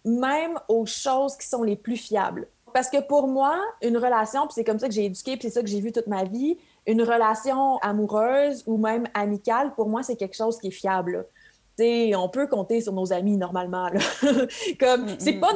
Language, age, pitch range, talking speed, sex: French, 30-49, 210-255 Hz, 210 wpm, female